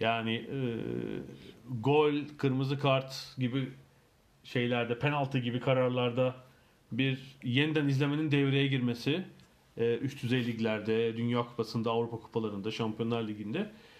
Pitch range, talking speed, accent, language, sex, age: 120-145 Hz, 105 wpm, native, Turkish, male, 40-59